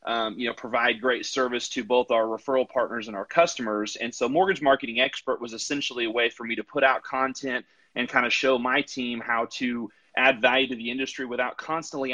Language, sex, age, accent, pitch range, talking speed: English, male, 30-49, American, 115-130 Hz, 215 wpm